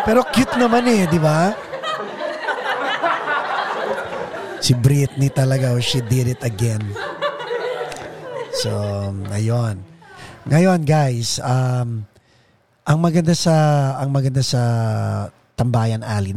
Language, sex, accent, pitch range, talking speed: Filipino, male, native, 110-140 Hz, 100 wpm